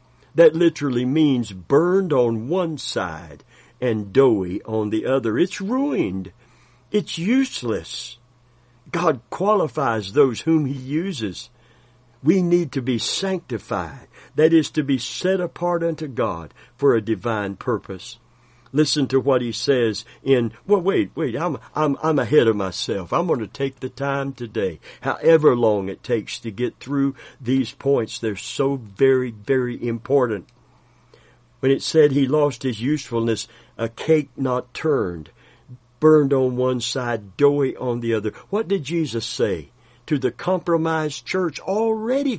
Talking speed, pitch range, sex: 145 wpm, 120-160 Hz, male